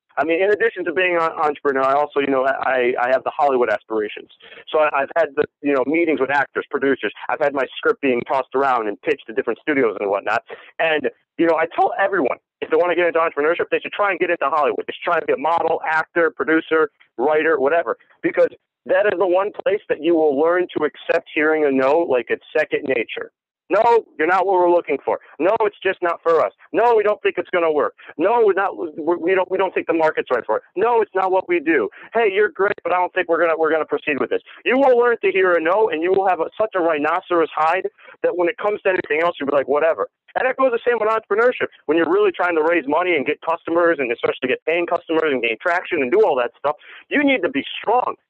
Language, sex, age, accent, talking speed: English, male, 40-59, American, 255 wpm